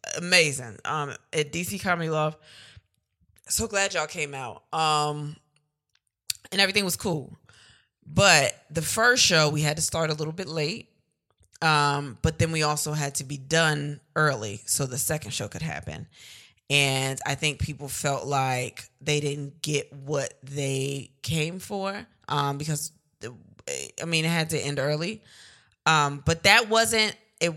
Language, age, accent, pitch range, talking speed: English, 20-39, American, 140-160 Hz, 155 wpm